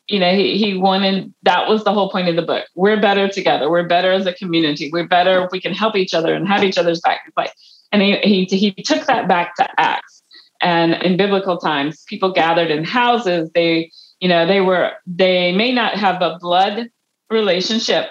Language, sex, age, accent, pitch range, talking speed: English, female, 40-59, American, 170-210 Hz, 210 wpm